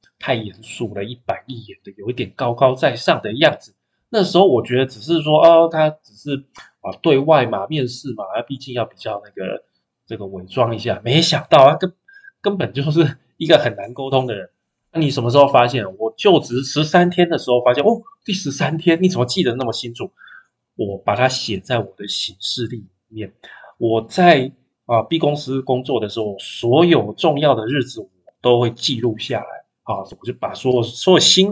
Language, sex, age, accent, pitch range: Chinese, male, 20-39, native, 115-160 Hz